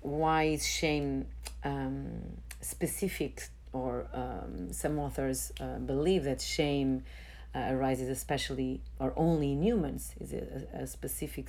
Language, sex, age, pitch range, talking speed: English, female, 40-59, 125-150 Hz, 125 wpm